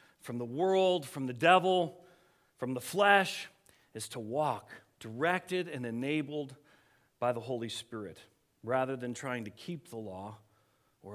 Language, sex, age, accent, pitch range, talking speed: English, male, 40-59, American, 130-180 Hz, 145 wpm